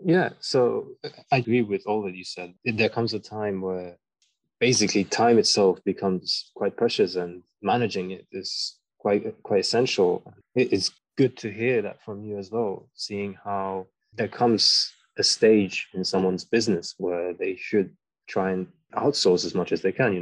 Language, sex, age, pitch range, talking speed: English, male, 20-39, 95-110 Hz, 170 wpm